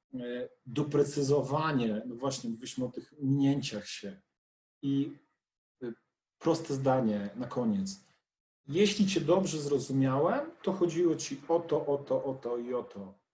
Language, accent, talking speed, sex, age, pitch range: Polish, native, 130 wpm, male, 40-59, 125-155 Hz